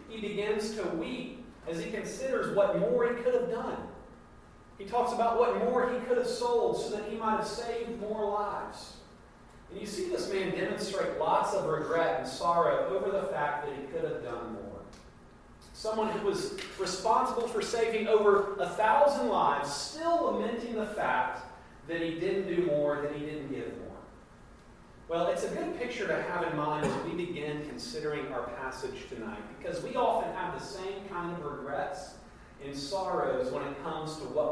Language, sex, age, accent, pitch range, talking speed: English, male, 40-59, American, 165-215 Hz, 185 wpm